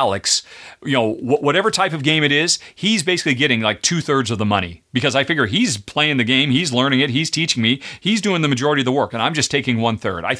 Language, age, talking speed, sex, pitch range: English, 40-59, 260 wpm, male, 115-155 Hz